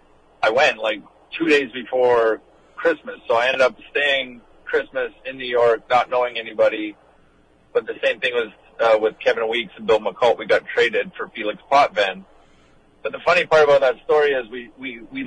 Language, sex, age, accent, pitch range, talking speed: English, male, 50-69, American, 120-155 Hz, 190 wpm